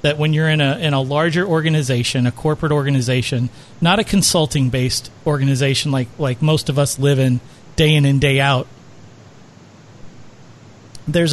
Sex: male